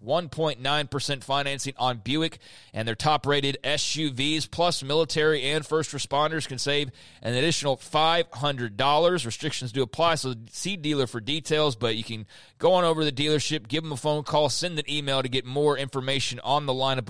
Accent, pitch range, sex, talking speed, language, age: American, 130-155 Hz, male, 170 wpm, English, 30-49